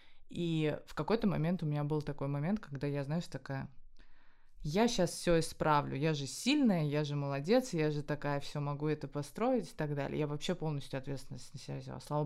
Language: Russian